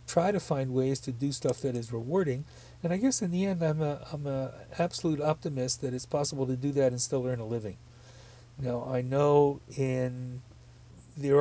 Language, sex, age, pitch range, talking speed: English, male, 40-59, 120-140 Hz, 200 wpm